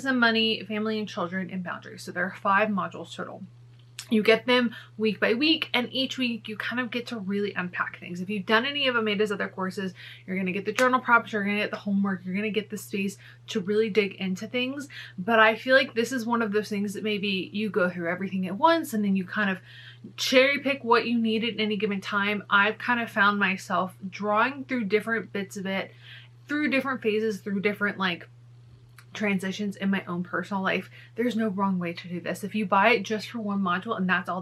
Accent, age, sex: American, 20-39, female